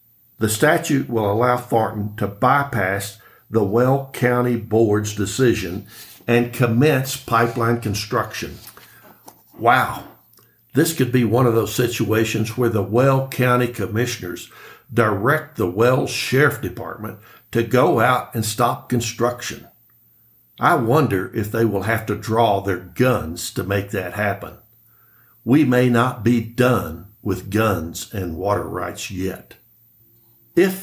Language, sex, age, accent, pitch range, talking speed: English, male, 60-79, American, 105-125 Hz, 130 wpm